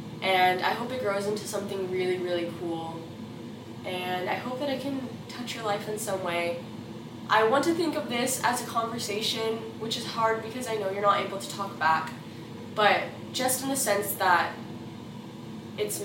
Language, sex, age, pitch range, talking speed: English, female, 10-29, 175-240 Hz, 185 wpm